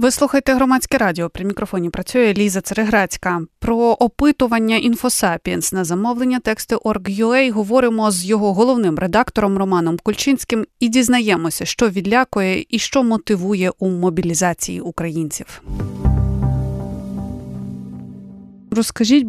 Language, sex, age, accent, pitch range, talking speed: Ukrainian, female, 20-39, native, 180-230 Hz, 105 wpm